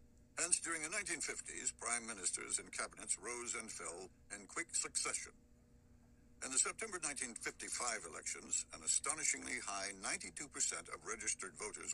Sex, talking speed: male, 130 wpm